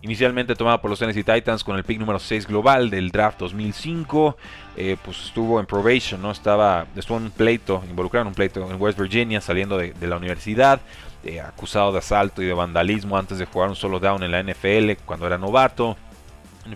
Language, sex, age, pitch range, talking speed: Spanish, male, 30-49, 95-110 Hz, 205 wpm